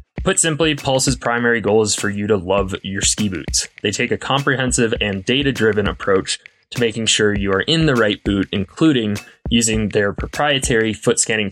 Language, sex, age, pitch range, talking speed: English, male, 20-39, 100-130 Hz, 180 wpm